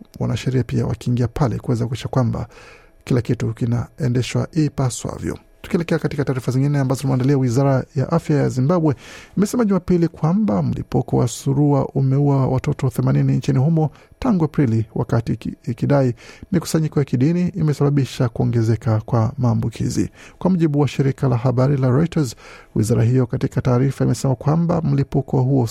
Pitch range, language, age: 120-145 Hz, Swahili, 50-69